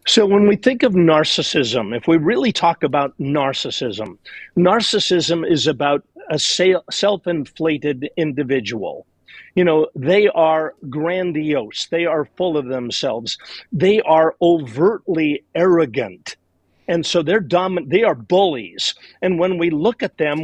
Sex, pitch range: male, 155-205 Hz